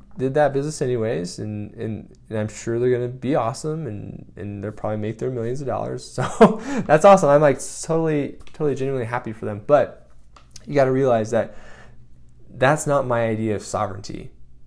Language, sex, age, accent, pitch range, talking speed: English, male, 20-39, American, 105-130 Hz, 185 wpm